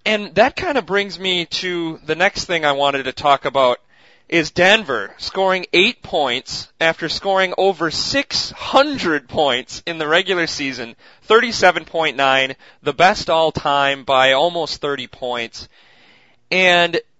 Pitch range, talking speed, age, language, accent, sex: 140-190 Hz, 135 wpm, 30-49, English, American, male